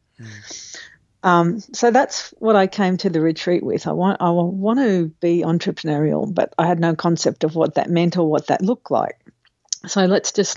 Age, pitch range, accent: 50-69, 160-195 Hz, Australian